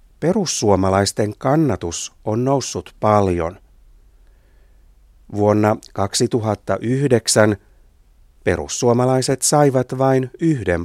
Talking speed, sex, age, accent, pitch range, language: 60 wpm, male, 60-79, native, 90-130 Hz, Finnish